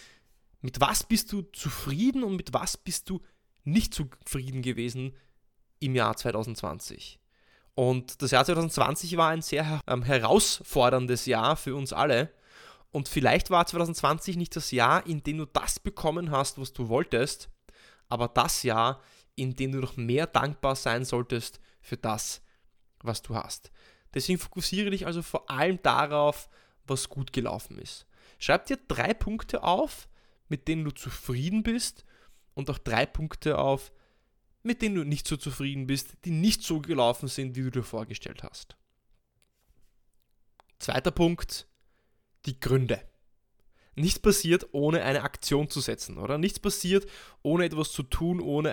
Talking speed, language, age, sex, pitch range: 150 wpm, German, 20-39, male, 130-170 Hz